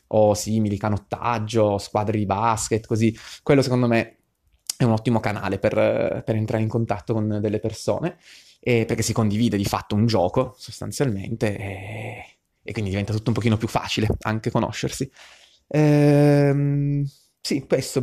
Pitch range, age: 105-125 Hz, 20-39